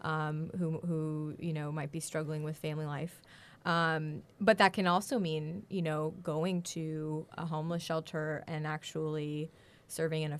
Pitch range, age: 160-180 Hz, 20-39